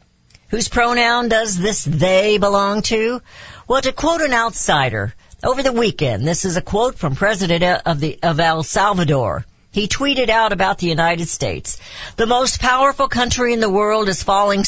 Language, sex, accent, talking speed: English, female, American, 170 wpm